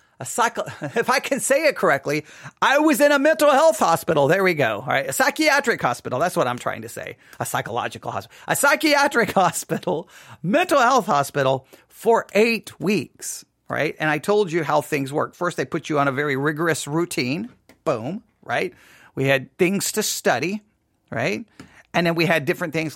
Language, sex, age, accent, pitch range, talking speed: English, male, 40-59, American, 140-200 Hz, 185 wpm